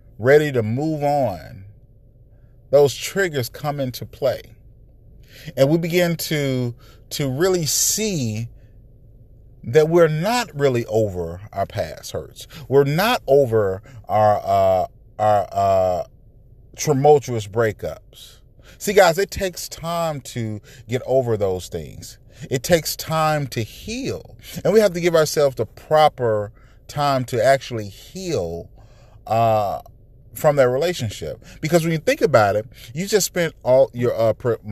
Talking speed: 130 wpm